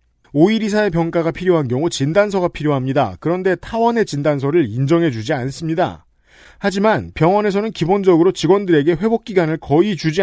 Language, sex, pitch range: Korean, male, 145-205 Hz